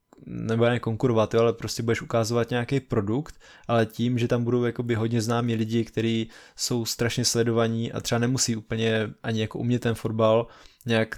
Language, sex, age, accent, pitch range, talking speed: Czech, male, 20-39, native, 110-125 Hz, 165 wpm